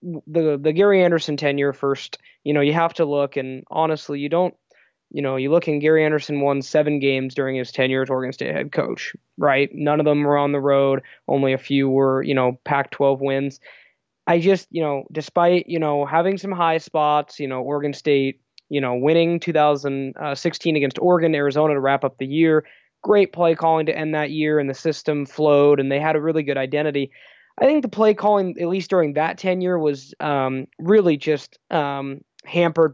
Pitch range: 140-165 Hz